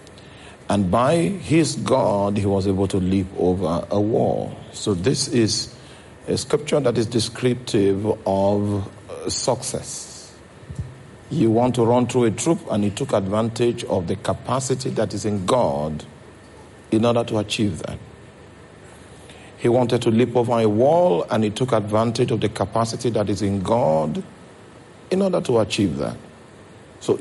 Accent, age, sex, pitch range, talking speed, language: Nigerian, 50-69, male, 100-125 Hz, 150 wpm, English